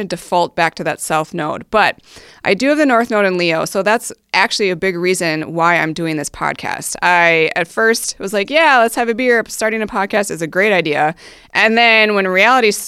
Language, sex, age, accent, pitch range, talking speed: English, female, 30-49, American, 170-210 Hz, 220 wpm